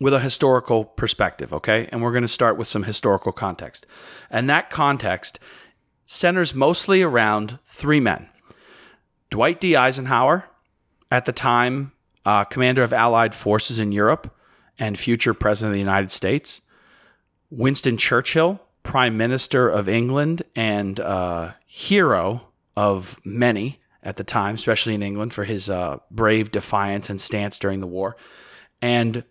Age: 30-49